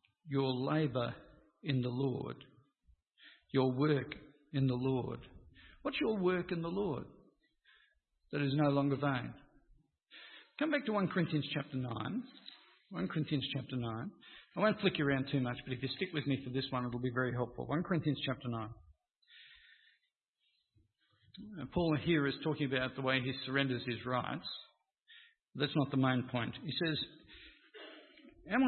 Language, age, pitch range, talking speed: English, 50-69, 135-185 Hz, 160 wpm